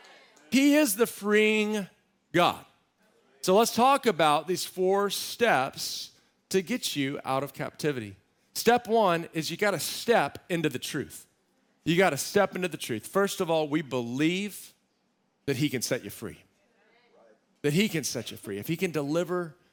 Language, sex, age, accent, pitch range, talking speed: English, male, 40-59, American, 145-205 Hz, 170 wpm